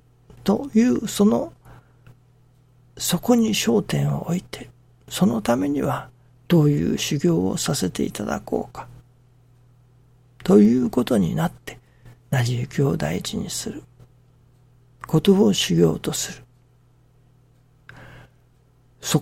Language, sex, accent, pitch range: Japanese, male, native, 125-150 Hz